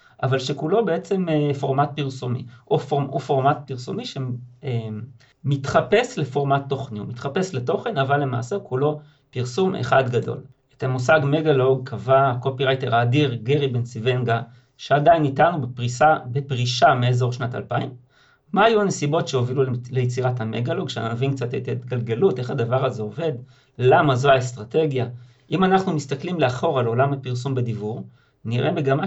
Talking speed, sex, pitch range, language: 140 wpm, male, 125-150 Hz, Hebrew